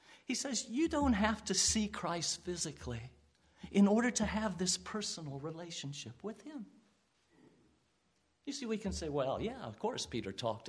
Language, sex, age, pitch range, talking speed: English, male, 50-69, 170-260 Hz, 165 wpm